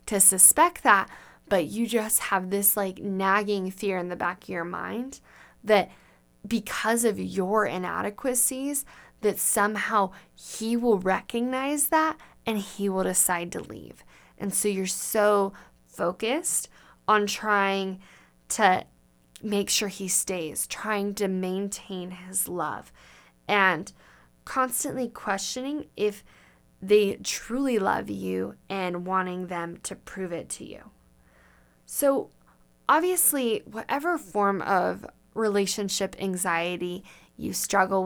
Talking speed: 120 wpm